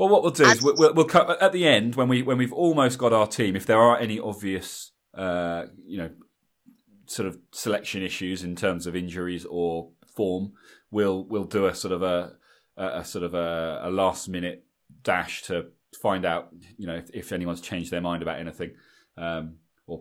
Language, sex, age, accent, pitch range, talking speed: English, male, 30-49, British, 85-120 Hz, 200 wpm